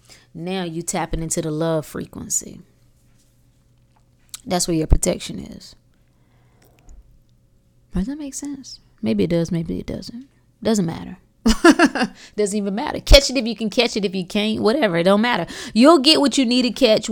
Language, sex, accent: English, female, American